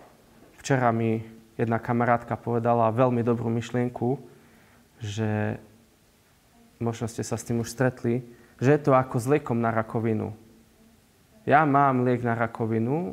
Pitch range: 110-130 Hz